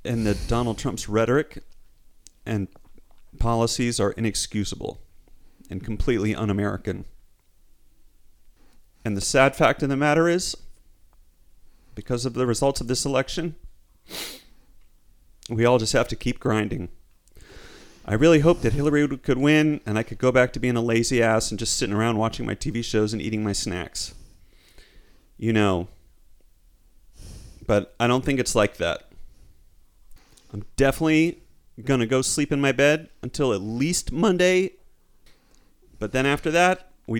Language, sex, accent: English, male, American